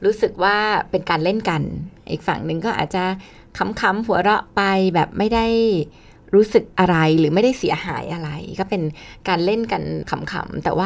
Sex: female